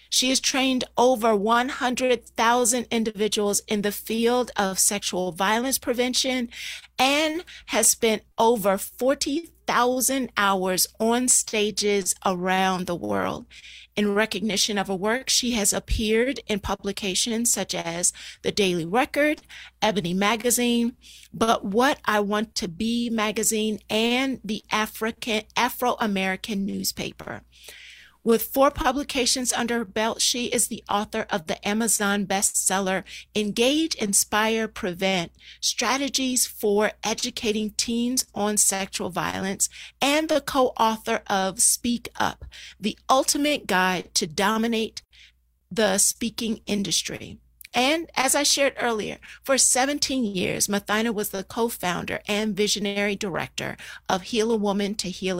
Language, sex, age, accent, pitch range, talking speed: English, female, 40-59, American, 200-245 Hz, 120 wpm